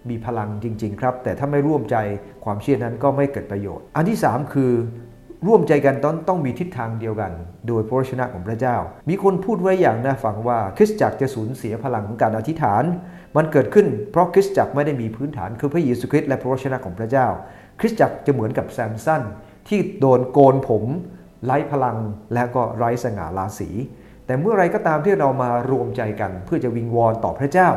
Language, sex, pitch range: English, male, 110-145 Hz